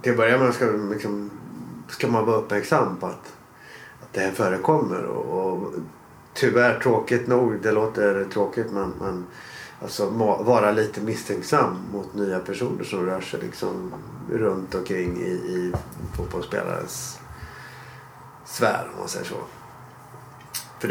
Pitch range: 90-110 Hz